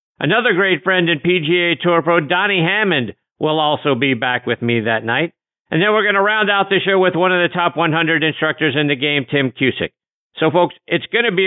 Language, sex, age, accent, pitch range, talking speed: English, male, 50-69, American, 145-190 Hz, 230 wpm